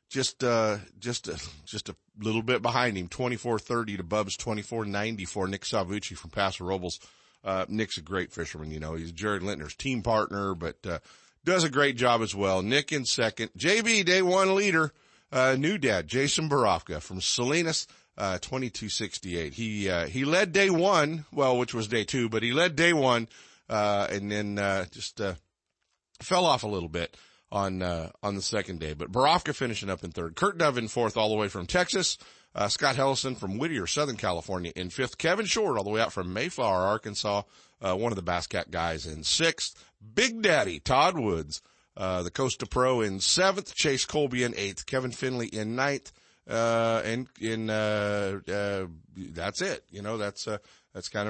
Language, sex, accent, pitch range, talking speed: English, male, American, 95-130 Hz, 190 wpm